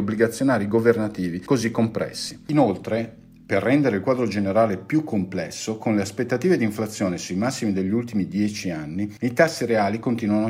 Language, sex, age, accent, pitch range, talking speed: Italian, male, 50-69, native, 95-115 Hz, 155 wpm